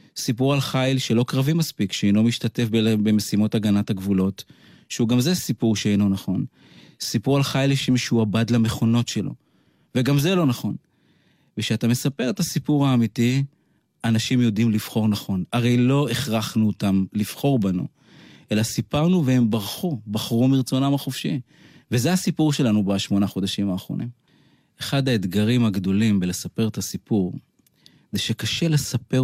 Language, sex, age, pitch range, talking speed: Hebrew, male, 30-49, 105-135 Hz, 130 wpm